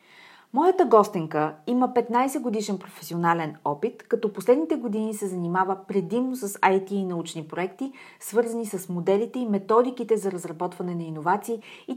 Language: Bulgarian